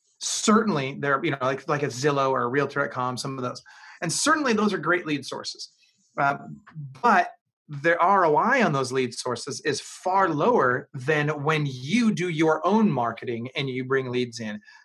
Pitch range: 130-170 Hz